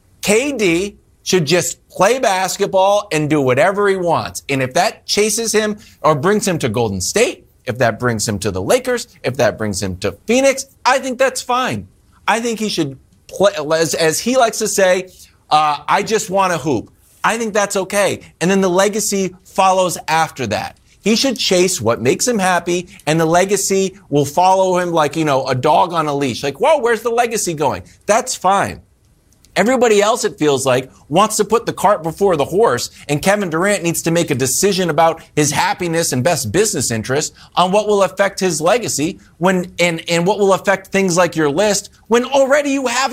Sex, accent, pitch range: male, American, 155-210 Hz